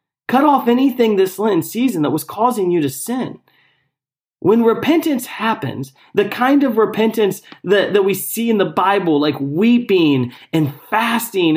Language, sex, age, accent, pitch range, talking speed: English, male, 30-49, American, 175-265 Hz, 155 wpm